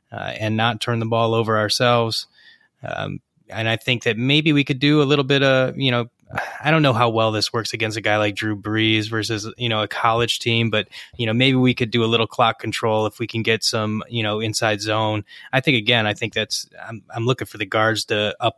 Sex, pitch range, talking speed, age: male, 105-120 Hz, 245 wpm, 20-39